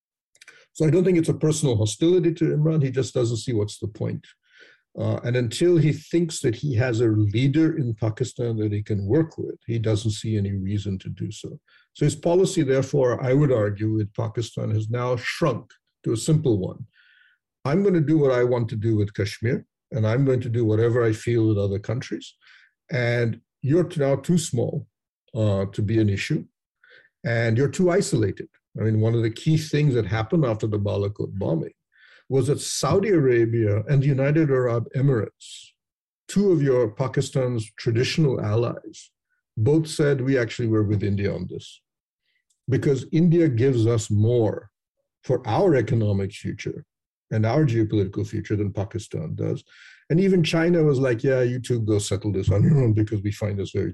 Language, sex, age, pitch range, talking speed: English, male, 50-69, 110-145 Hz, 185 wpm